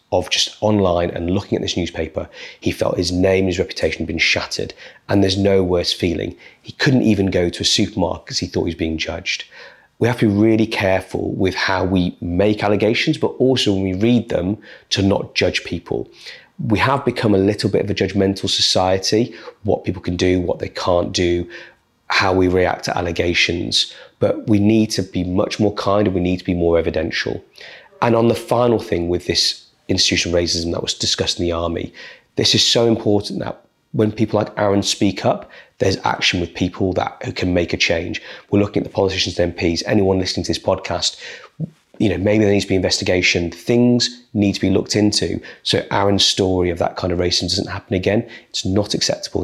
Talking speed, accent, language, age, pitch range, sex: 205 wpm, British, English, 30-49, 90-110 Hz, male